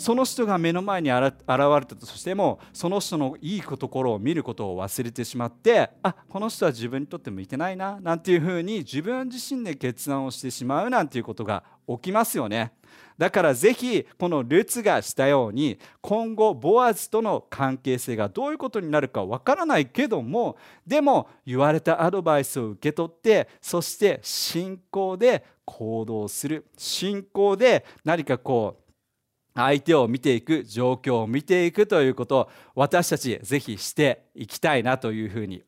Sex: male